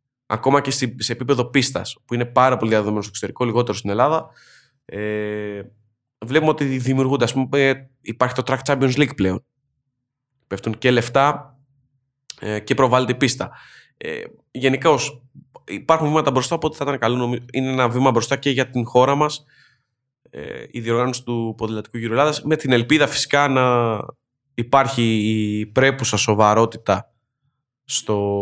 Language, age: Greek, 20-39